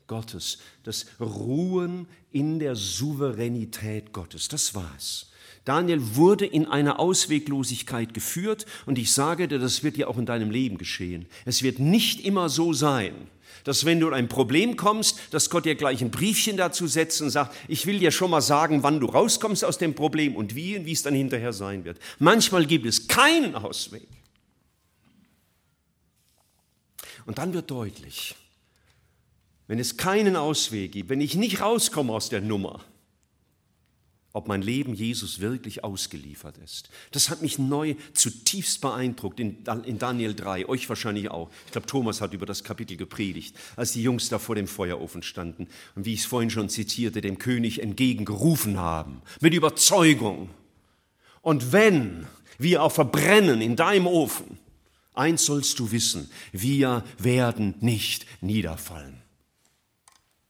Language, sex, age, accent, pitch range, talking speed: German, male, 50-69, German, 105-155 Hz, 155 wpm